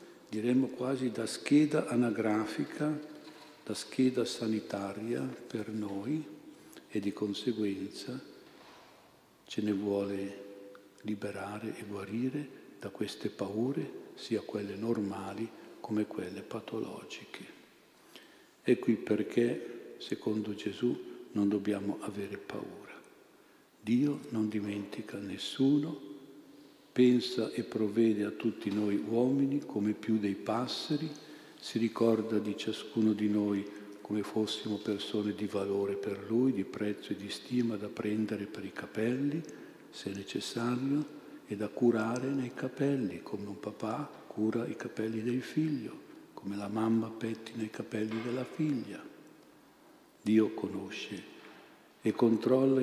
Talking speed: 115 wpm